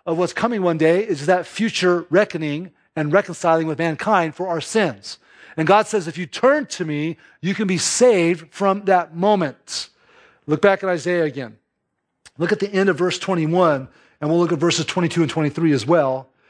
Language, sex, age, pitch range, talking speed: English, male, 40-59, 155-195 Hz, 190 wpm